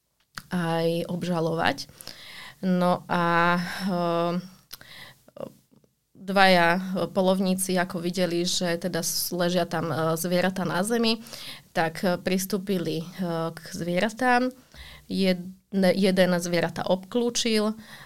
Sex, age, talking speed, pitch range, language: female, 20-39, 95 wpm, 165-185 Hz, Slovak